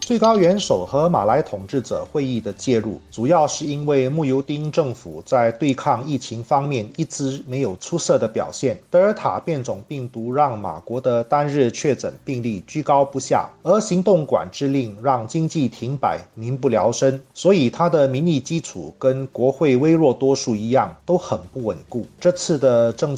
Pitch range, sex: 120-150 Hz, male